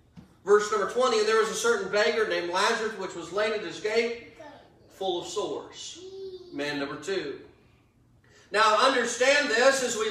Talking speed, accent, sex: 165 wpm, American, male